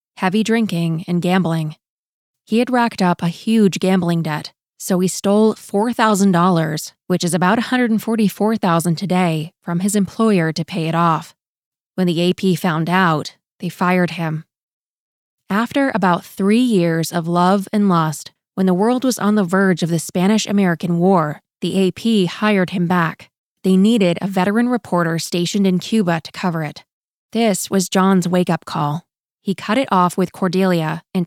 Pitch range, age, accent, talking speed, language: 170-205 Hz, 20-39, American, 160 wpm, English